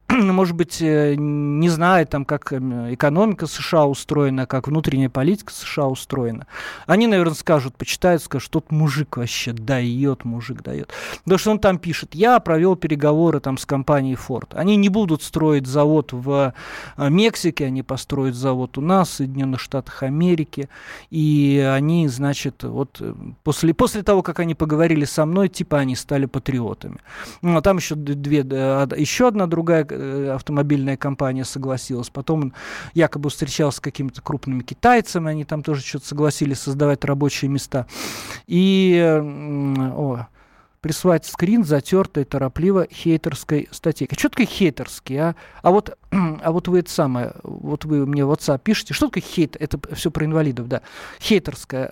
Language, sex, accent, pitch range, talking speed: Russian, male, native, 135-170 Hz, 150 wpm